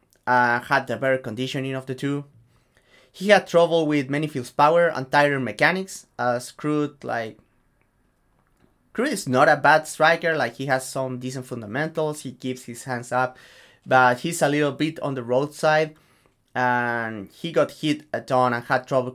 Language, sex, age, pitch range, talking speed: English, male, 30-49, 120-150 Hz, 180 wpm